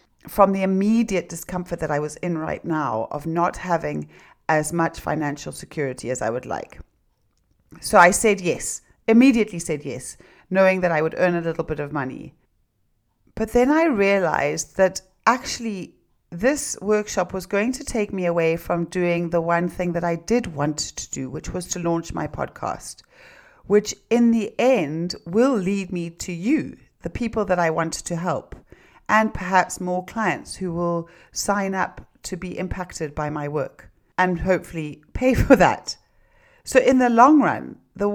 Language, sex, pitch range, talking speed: English, female, 155-205 Hz, 175 wpm